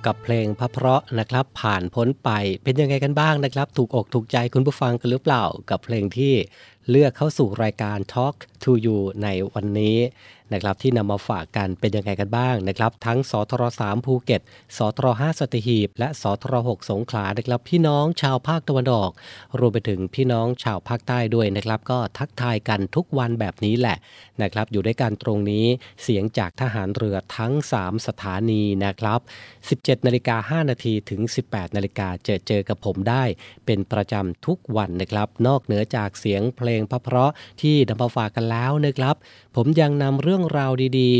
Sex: male